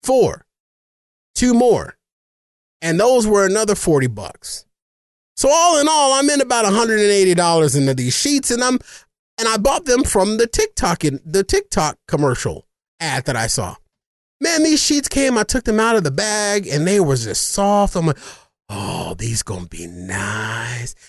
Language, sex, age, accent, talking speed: English, male, 30-49, American, 180 wpm